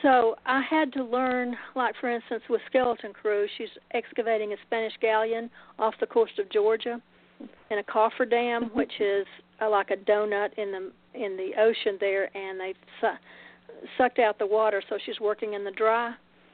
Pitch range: 205-245 Hz